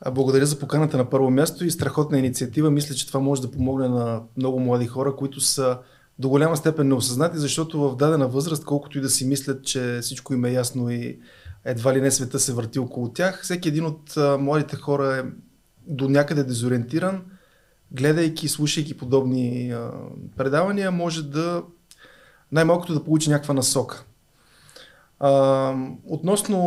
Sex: male